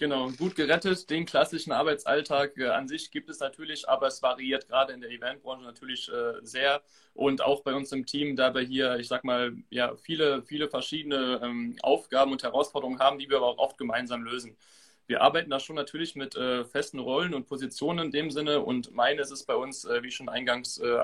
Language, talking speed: German, 210 wpm